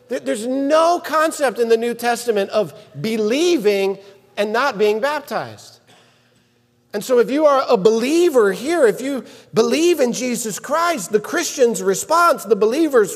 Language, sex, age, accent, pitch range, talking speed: English, male, 40-59, American, 160-270 Hz, 145 wpm